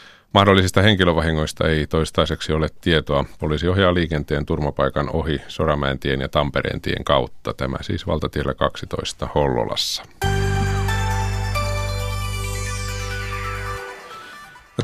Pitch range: 85-105 Hz